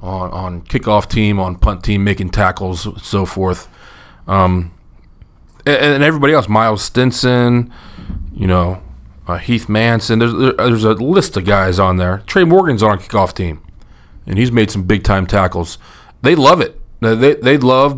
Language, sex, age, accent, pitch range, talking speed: English, male, 30-49, American, 95-115 Hz, 160 wpm